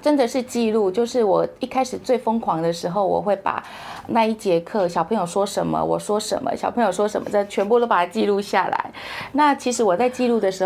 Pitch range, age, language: 180-220 Hz, 30-49, Chinese